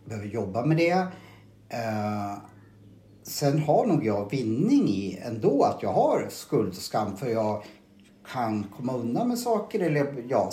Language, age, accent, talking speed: Swedish, 60-79, Norwegian, 155 wpm